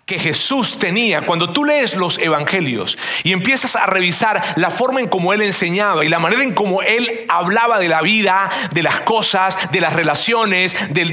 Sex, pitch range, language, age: male, 180-240 Hz, Spanish, 40-59